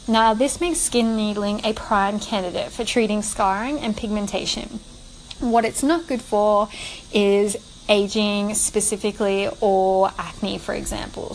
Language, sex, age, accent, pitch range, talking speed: English, female, 10-29, Australian, 195-230 Hz, 130 wpm